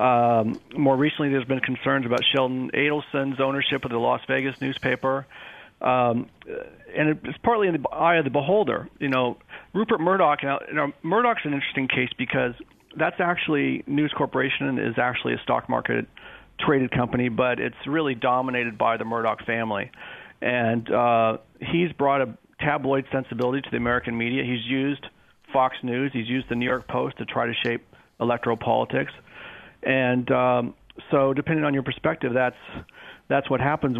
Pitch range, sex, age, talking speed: 120-135 Hz, male, 40-59, 160 wpm